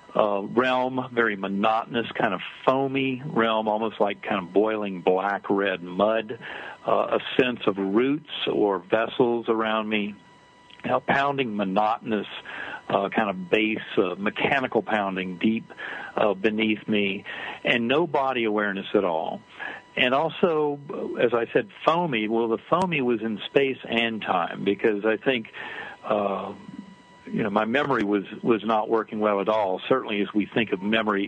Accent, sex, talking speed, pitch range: American, male, 155 wpm, 105-130 Hz